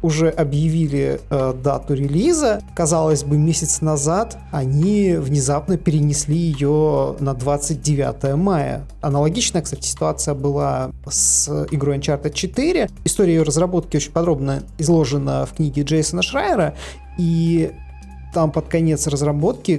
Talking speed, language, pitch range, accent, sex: 120 wpm, Russian, 145-175 Hz, native, male